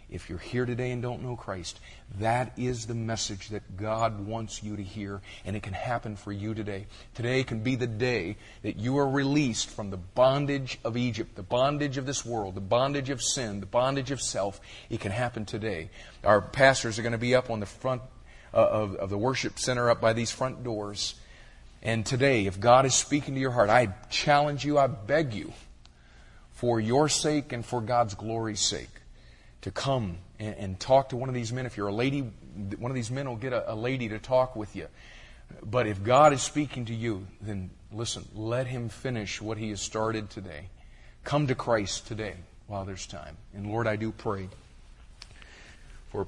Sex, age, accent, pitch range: male, 40-59, American, 100-125 Hz